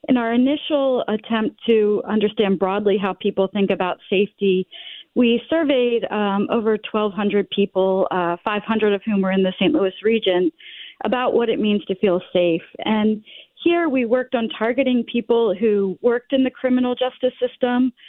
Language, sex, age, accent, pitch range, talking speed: English, female, 40-59, American, 180-230 Hz, 165 wpm